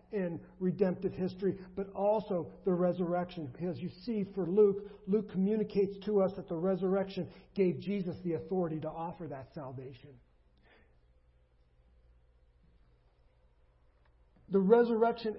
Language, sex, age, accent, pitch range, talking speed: English, male, 50-69, American, 155-200 Hz, 115 wpm